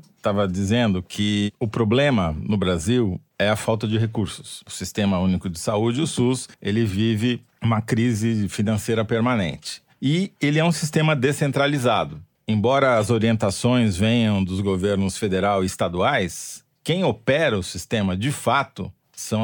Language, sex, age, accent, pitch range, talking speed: Portuguese, male, 40-59, Brazilian, 105-130 Hz, 145 wpm